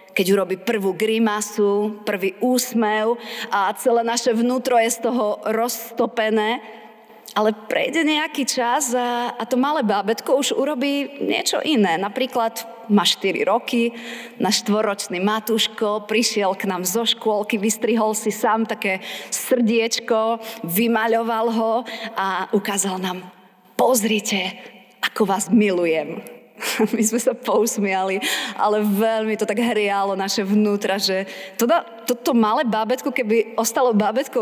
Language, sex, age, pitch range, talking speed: Slovak, female, 30-49, 200-235 Hz, 125 wpm